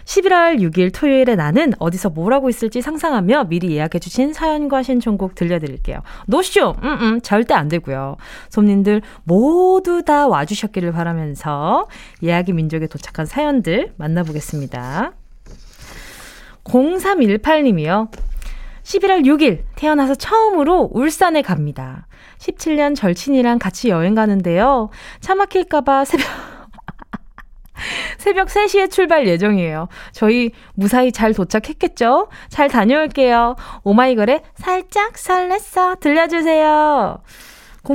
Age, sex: 20-39, female